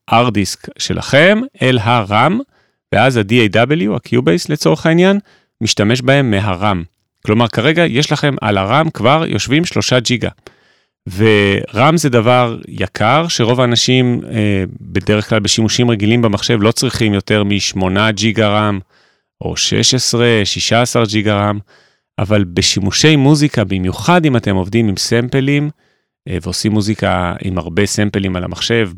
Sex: male